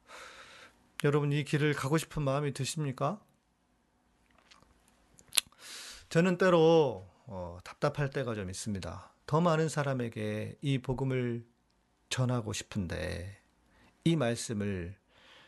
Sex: male